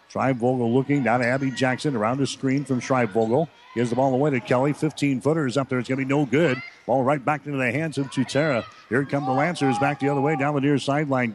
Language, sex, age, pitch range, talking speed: English, male, 50-69, 125-145 Hz, 260 wpm